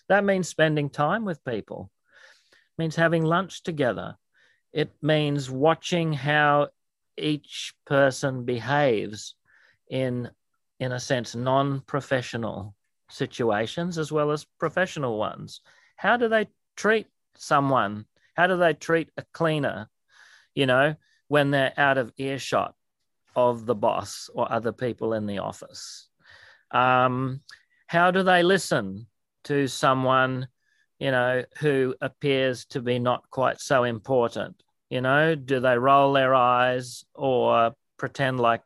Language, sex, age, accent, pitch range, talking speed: English, male, 40-59, Australian, 120-150 Hz, 125 wpm